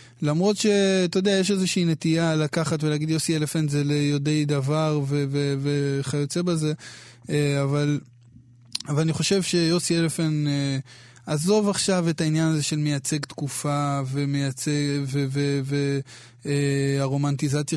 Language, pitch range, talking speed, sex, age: Hebrew, 140-165 Hz, 115 wpm, male, 20-39